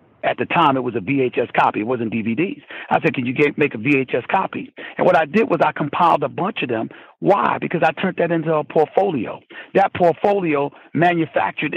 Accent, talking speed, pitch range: American, 210 wpm, 165-215 Hz